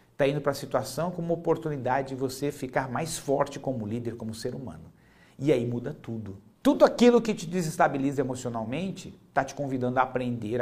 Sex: male